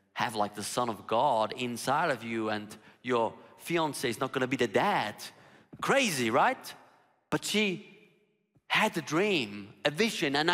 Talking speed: 165 wpm